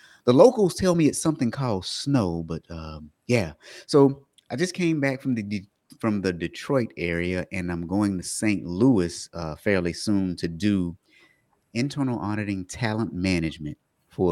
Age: 30-49